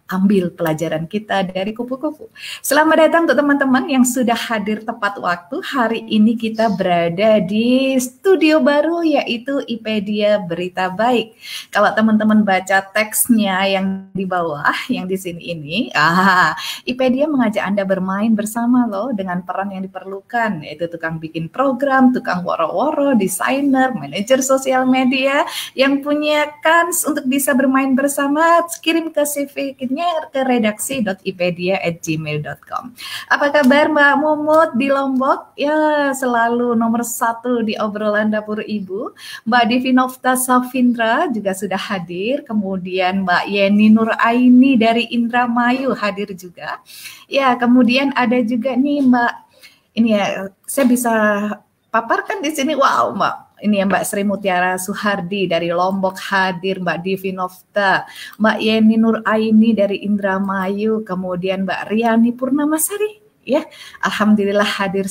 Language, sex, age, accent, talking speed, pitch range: Indonesian, female, 20-39, native, 125 wpm, 195-265 Hz